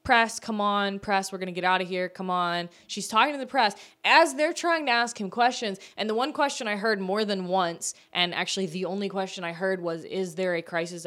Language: English